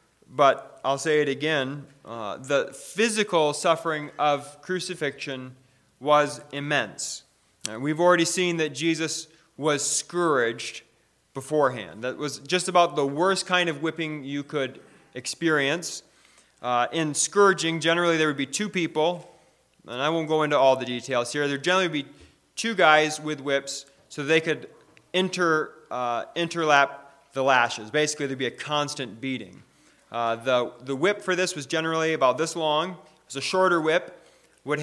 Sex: male